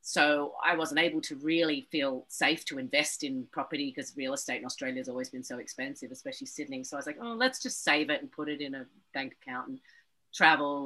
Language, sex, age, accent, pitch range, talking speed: English, female, 40-59, Australian, 150-240 Hz, 230 wpm